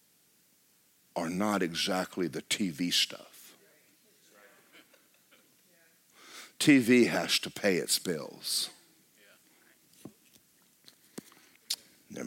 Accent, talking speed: American, 65 wpm